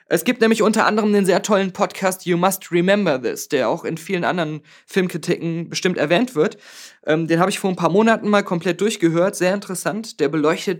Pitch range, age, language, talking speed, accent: 160-205 Hz, 20-39, German, 200 wpm, German